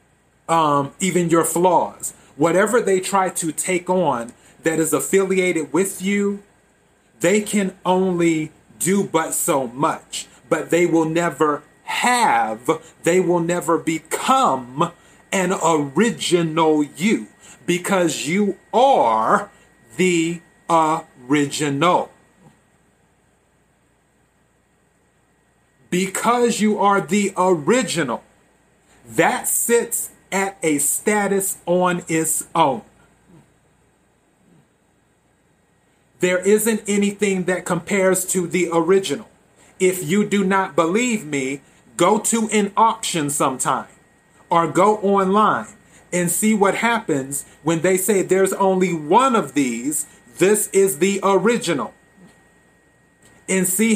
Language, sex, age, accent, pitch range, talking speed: English, male, 30-49, American, 165-200 Hz, 100 wpm